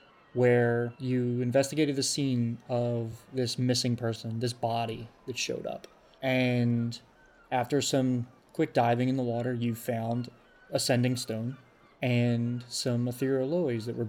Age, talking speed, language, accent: 20-39, 140 wpm, English, American